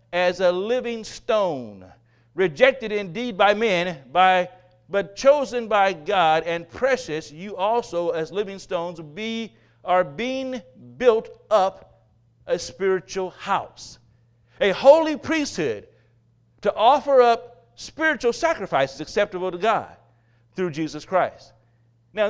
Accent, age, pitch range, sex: American, 50-69, 150-230 Hz, male